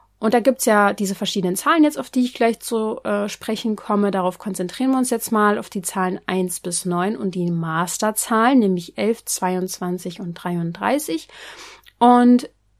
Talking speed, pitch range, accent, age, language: 180 wpm, 185-235 Hz, German, 30-49, German